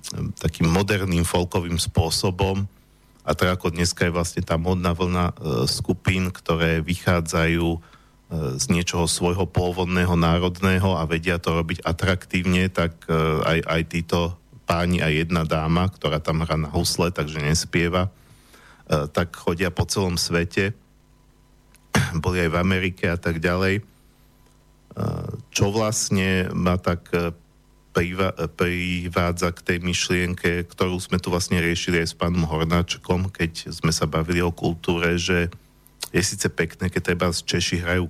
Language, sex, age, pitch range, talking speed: Slovak, male, 40-59, 85-90 Hz, 145 wpm